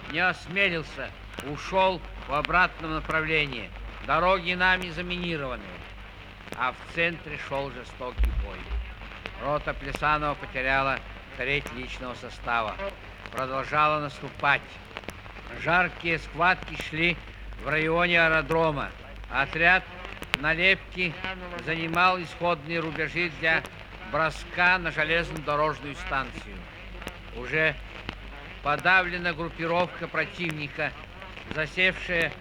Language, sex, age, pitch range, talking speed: Russian, male, 60-79, 115-170 Hz, 80 wpm